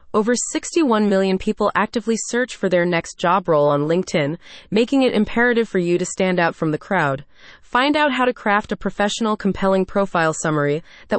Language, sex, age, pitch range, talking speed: English, female, 30-49, 175-230 Hz, 190 wpm